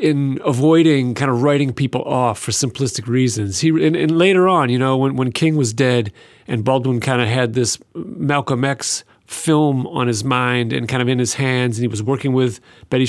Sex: male